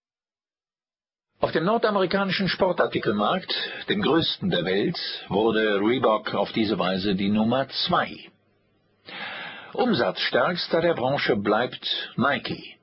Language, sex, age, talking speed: German, male, 50-69, 100 wpm